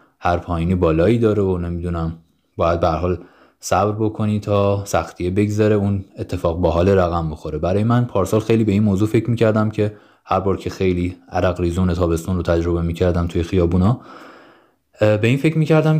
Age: 20-39